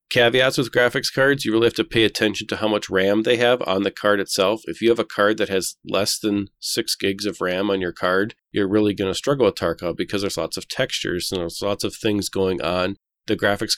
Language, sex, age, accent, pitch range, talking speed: English, male, 40-59, American, 100-115 Hz, 250 wpm